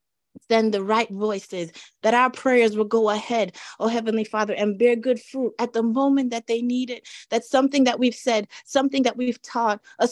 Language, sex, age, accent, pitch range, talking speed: English, female, 30-49, American, 200-245 Hz, 200 wpm